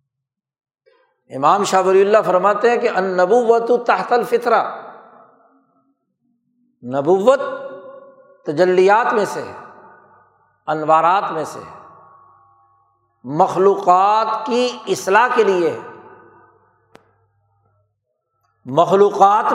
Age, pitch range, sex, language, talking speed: 60-79, 165-260 Hz, male, Urdu, 70 wpm